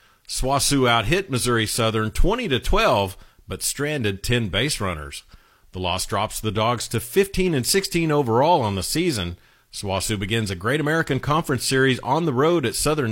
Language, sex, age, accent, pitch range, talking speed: English, male, 40-59, American, 105-145 Hz, 160 wpm